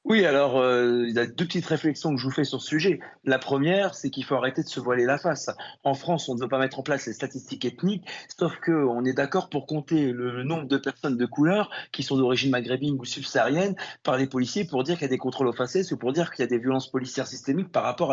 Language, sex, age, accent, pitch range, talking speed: French, male, 30-49, French, 125-155 Hz, 270 wpm